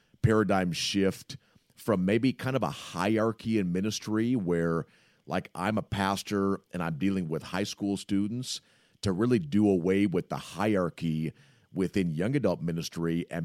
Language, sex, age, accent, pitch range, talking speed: English, male, 40-59, American, 85-105 Hz, 150 wpm